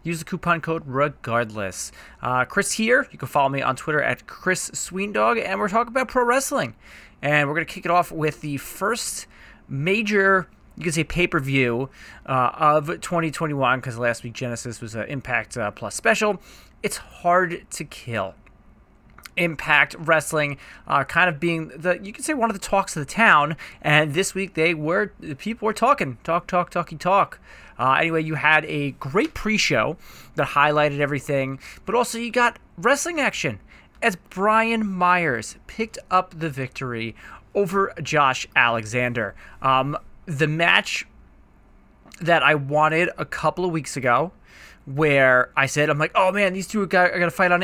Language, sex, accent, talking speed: English, male, American, 175 wpm